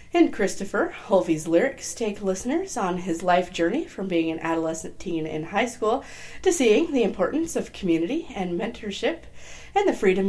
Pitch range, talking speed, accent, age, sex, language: 165-245 Hz, 170 wpm, American, 30-49, female, English